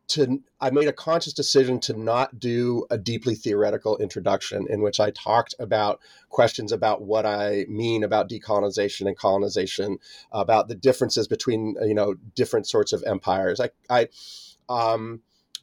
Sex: male